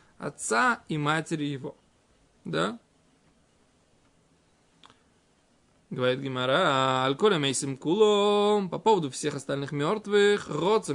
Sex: male